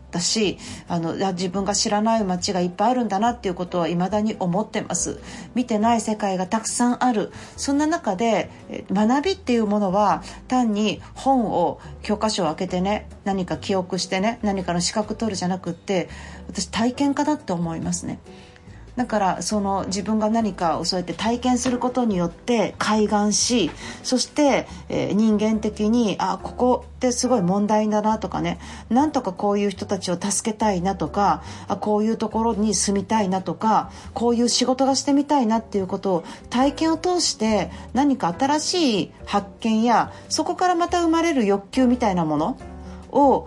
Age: 40-59